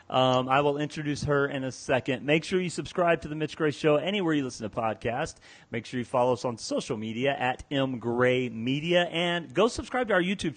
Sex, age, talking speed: male, 30-49, 225 wpm